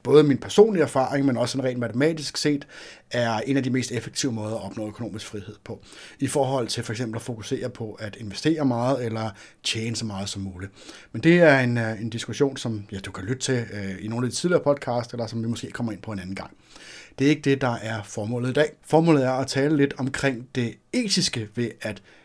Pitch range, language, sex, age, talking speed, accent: 110-140 Hz, Danish, male, 60-79, 230 wpm, native